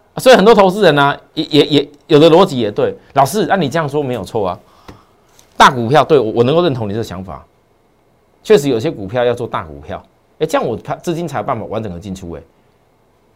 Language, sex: Chinese, male